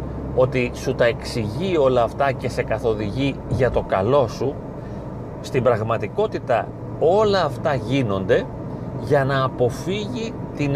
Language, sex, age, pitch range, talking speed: Greek, male, 40-59, 120-175 Hz, 125 wpm